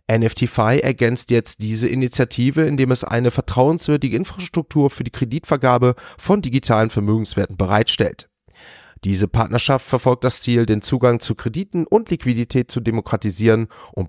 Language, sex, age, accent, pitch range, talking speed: German, male, 30-49, German, 110-130 Hz, 130 wpm